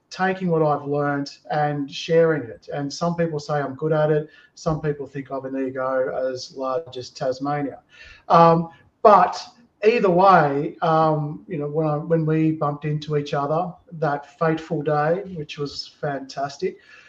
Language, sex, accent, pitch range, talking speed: English, male, Australian, 140-165 Hz, 160 wpm